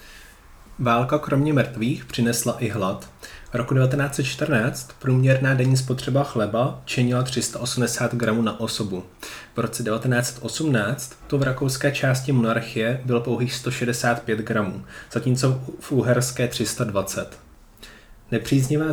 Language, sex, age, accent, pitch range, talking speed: Czech, male, 20-39, native, 110-125 Hz, 110 wpm